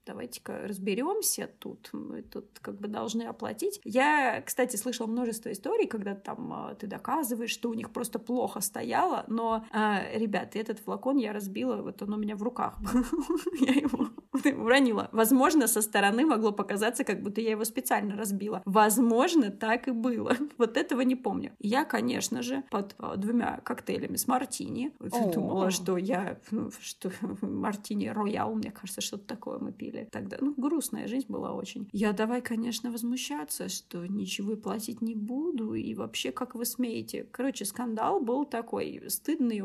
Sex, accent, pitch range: female, native, 210-260 Hz